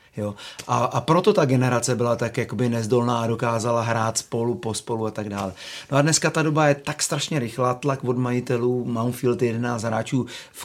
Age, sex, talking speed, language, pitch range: 30-49, male, 180 wpm, Czech, 115-135 Hz